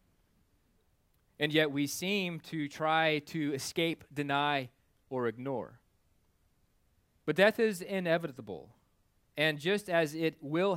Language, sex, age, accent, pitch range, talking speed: English, male, 30-49, American, 135-175 Hz, 110 wpm